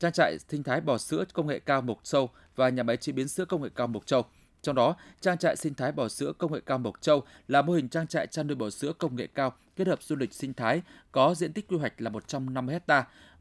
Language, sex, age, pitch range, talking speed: Vietnamese, male, 20-39, 120-165 Hz, 275 wpm